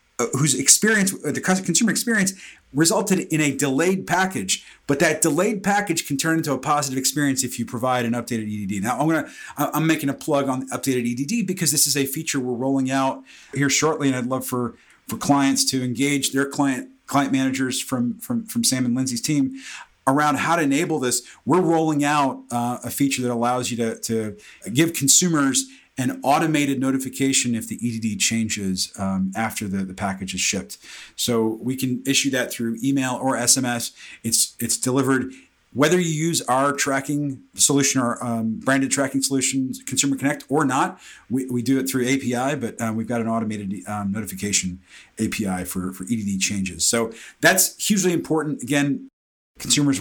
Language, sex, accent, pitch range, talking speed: English, male, American, 115-150 Hz, 180 wpm